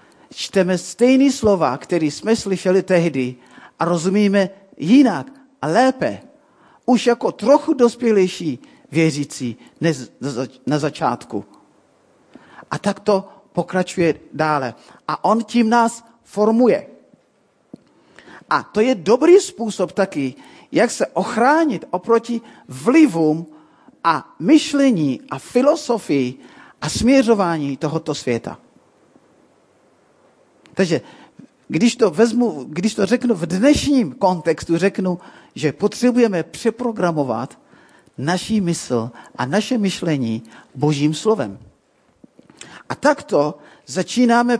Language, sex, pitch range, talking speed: Czech, male, 160-235 Hz, 95 wpm